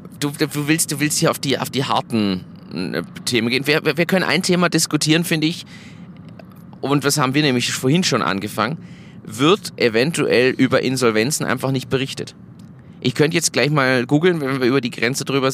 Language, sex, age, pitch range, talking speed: German, male, 30-49, 120-155 Hz, 185 wpm